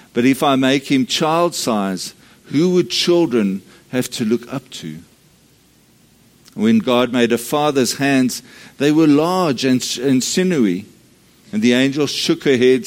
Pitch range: 120-165 Hz